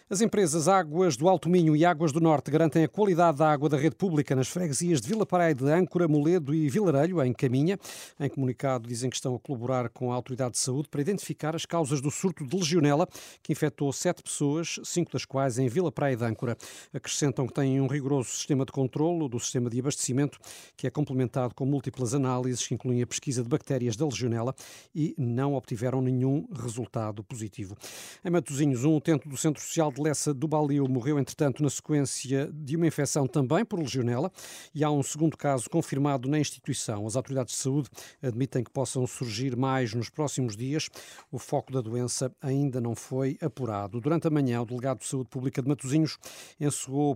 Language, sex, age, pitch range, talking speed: Portuguese, male, 50-69, 130-155 Hz, 195 wpm